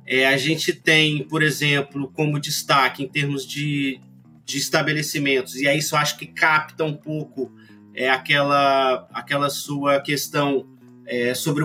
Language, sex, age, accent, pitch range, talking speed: English, male, 30-49, Brazilian, 130-180 Hz, 150 wpm